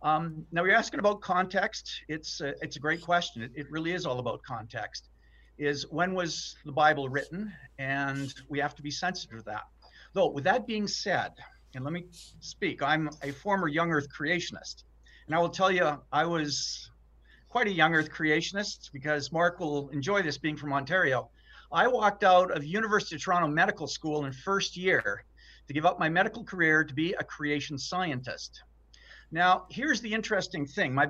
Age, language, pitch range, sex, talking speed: 50-69, English, 145-190 Hz, male, 185 wpm